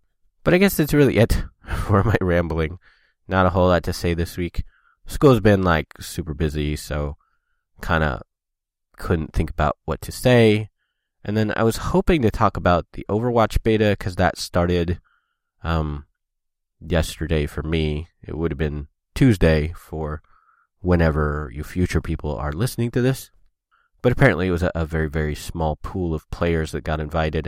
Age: 20-39